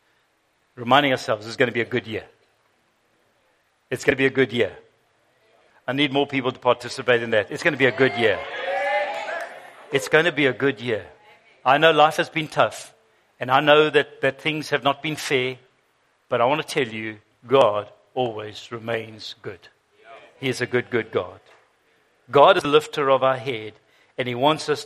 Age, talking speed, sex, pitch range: 60-79, 200 wpm, male, 120-150 Hz